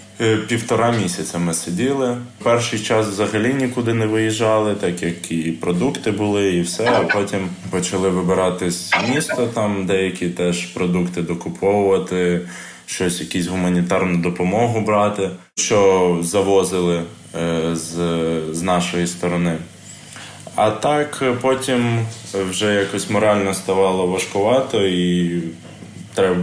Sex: male